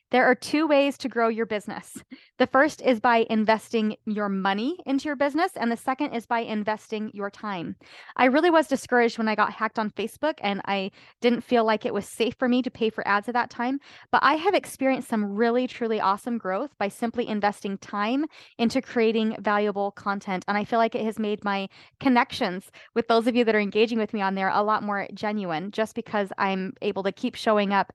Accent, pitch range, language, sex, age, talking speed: American, 210-260 Hz, English, female, 20-39, 220 wpm